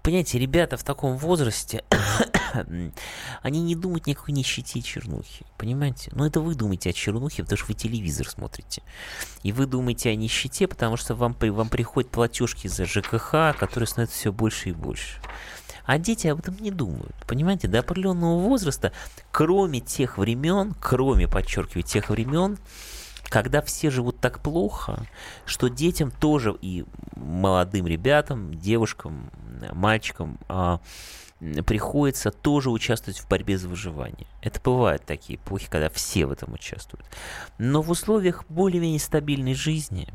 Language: Russian